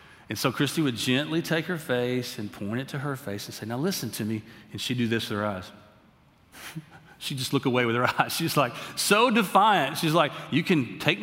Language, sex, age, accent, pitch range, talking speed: English, male, 40-59, American, 140-190 Hz, 230 wpm